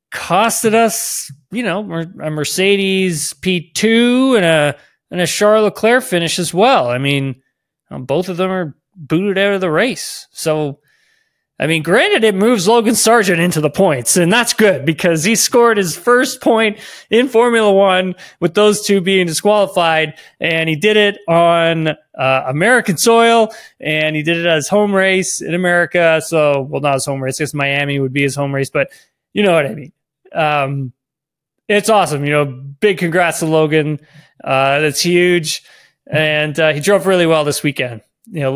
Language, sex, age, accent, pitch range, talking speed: English, male, 20-39, American, 150-195 Hz, 180 wpm